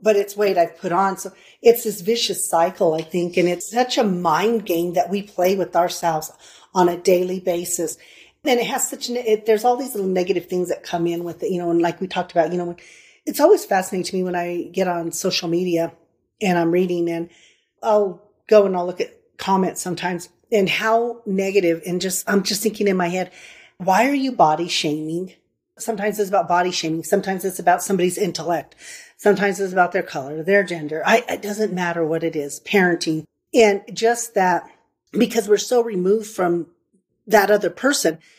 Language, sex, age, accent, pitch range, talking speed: English, female, 40-59, American, 175-215 Hz, 200 wpm